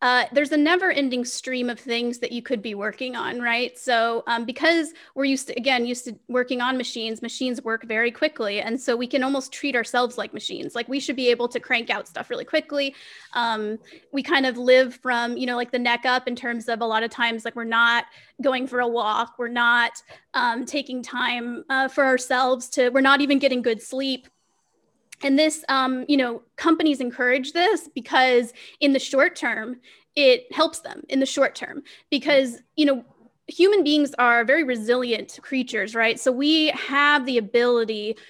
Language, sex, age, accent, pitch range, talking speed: English, female, 20-39, American, 235-275 Hz, 200 wpm